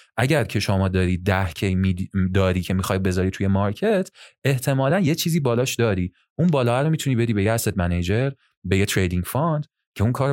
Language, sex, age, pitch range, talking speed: Persian, male, 30-49, 90-115 Hz, 190 wpm